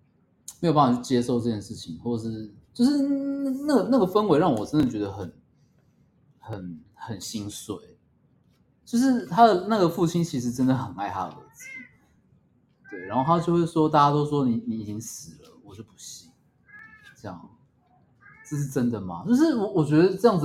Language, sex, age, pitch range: Chinese, male, 20-39, 100-150 Hz